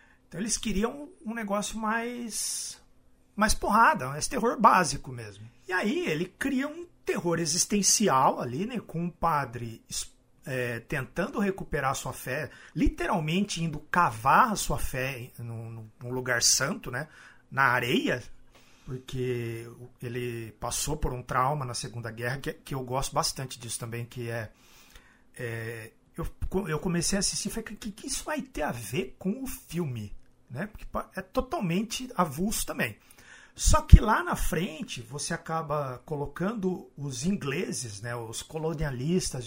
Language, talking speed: Portuguese, 145 wpm